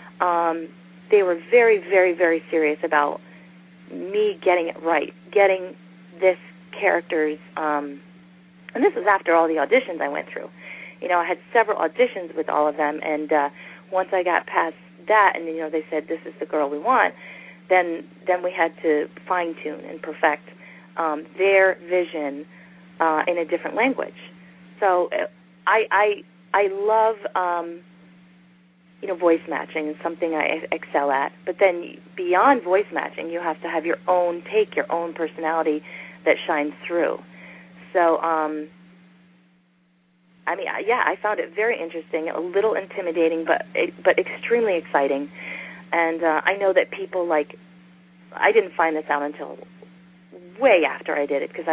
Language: English